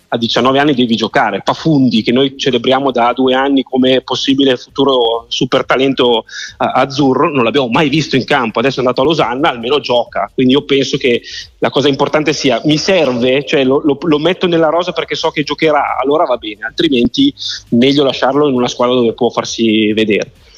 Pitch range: 135-180 Hz